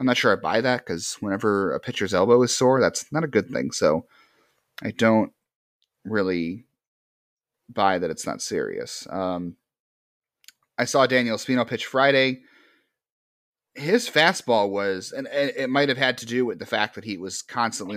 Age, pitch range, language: 30-49, 95-125 Hz, English